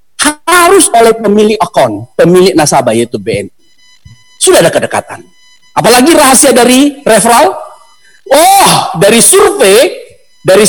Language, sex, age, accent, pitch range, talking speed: Indonesian, male, 40-59, native, 170-280 Hz, 105 wpm